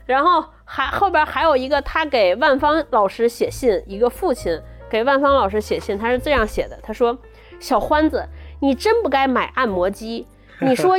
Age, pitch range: 20-39, 225-315 Hz